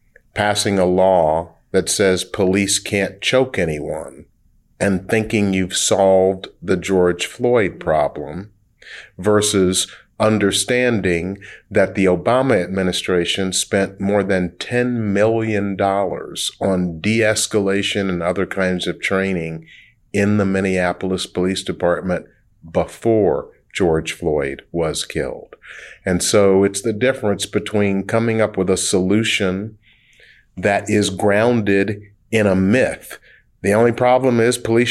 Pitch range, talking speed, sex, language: 95-110 Hz, 115 wpm, male, English